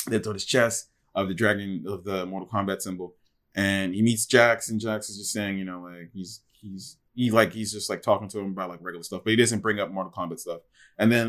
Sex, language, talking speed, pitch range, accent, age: male, English, 255 wpm, 95-110 Hz, American, 20-39